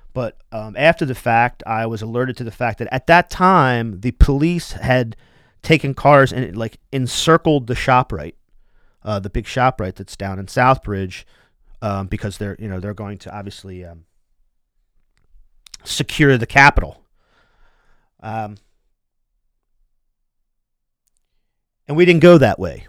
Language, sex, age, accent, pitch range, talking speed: English, male, 40-59, American, 105-135 Hz, 140 wpm